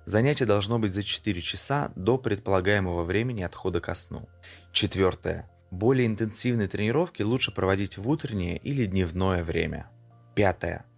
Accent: native